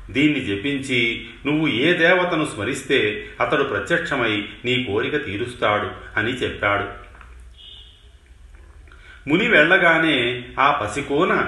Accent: native